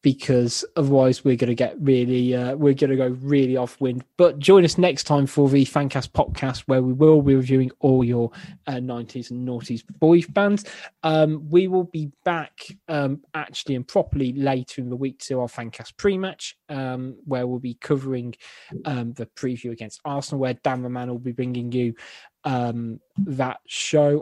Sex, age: male, 20-39